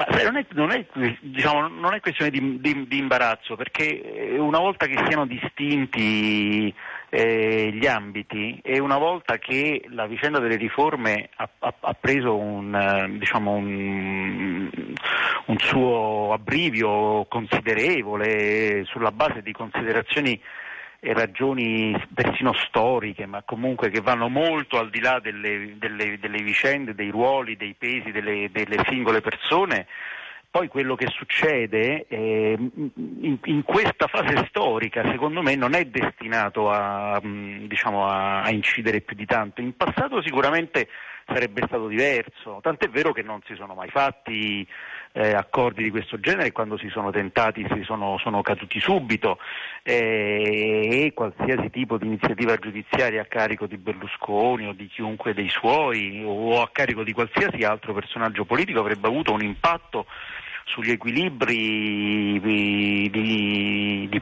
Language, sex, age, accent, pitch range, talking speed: Italian, male, 40-59, native, 105-130 Hz, 140 wpm